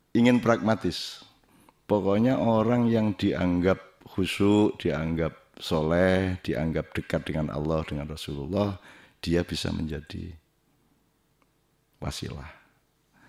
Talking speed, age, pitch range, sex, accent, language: 85 wpm, 50-69, 85-105 Hz, male, native, Indonesian